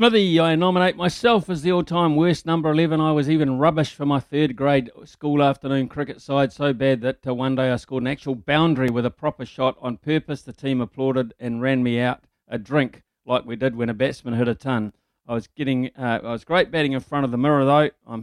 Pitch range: 120-145 Hz